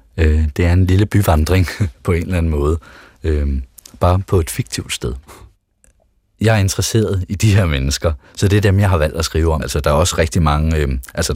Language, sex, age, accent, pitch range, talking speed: Danish, male, 30-49, native, 75-95 Hz, 205 wpm